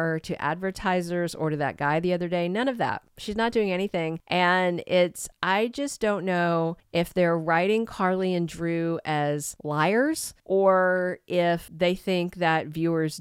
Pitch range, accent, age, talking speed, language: 155-195 Hz, American, 40-59, 165 wpm, English